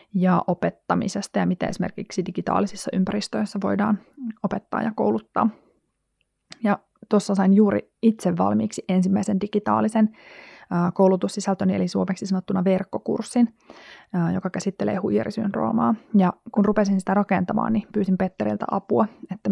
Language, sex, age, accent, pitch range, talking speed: Finnish, female, 20-39, native, 175-205 Hz, 115 wpm